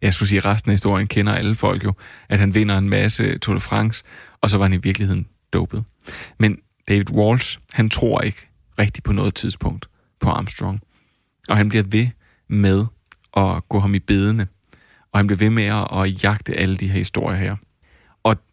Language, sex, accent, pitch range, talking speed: Danish, male, native, 95-110 Hz, 200 wpm